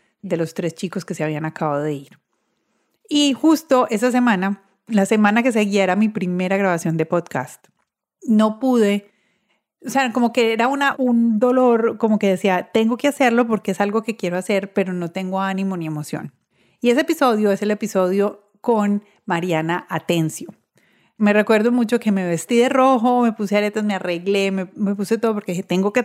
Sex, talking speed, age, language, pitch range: female, 190 wpm, 30-49, Spanish, 190-230 Hz